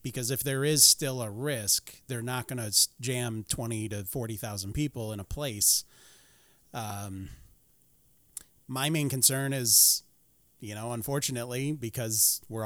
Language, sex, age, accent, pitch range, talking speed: English, male, 30-49, American, 110-140 Hz, 140 wpm